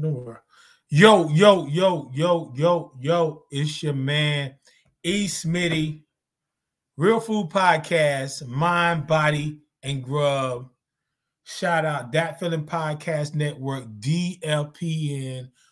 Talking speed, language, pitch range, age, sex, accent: 105 wpm, English, 135-165 Hz, 20-39, male, American